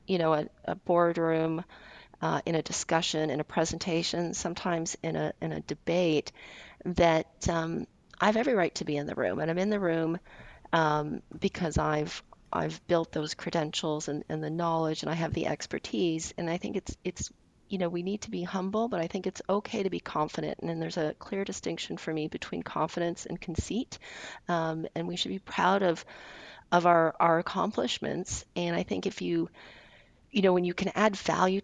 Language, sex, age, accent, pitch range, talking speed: English, female, 40-59, American, 155-180 Hz, 195 wpm